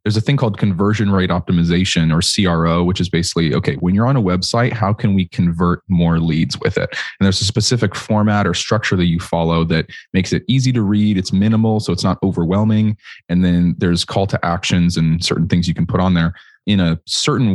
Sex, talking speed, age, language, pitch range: male, 220 wpm, 20-39, English, 85-105 Hz